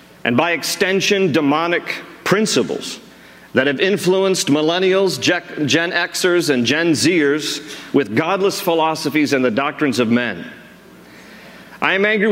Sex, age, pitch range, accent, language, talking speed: male, 50-69, 150-200 Hz, American, English, 120 wpm